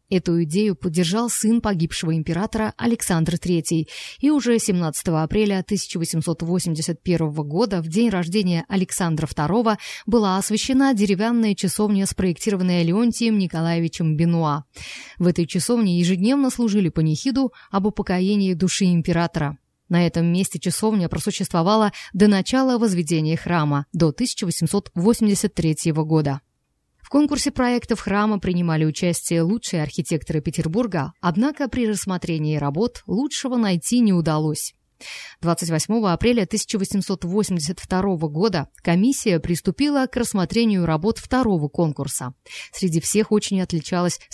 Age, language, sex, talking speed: 20-39, Russian, female, 110 wpm